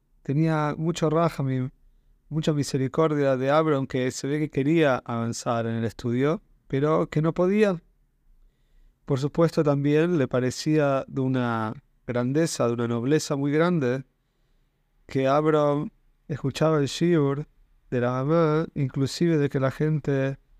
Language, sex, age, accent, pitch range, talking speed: Spanish, male, 30-49, Argentinian, 125-155 Hz, 135 wpm